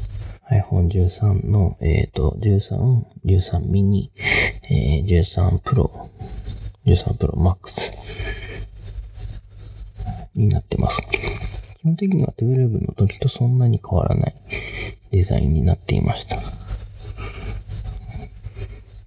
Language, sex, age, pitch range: Japanese, male, 30-49, 95-110 Hz